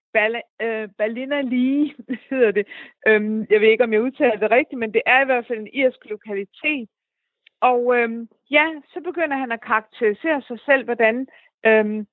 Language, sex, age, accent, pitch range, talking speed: Danish, female, 60-79, native, 210-260 Hz, 175 wpm